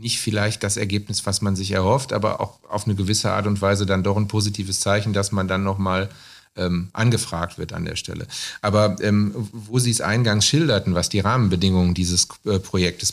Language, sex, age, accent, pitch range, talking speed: German, male, 40-59, German, 100-110 Hz, 195 wpm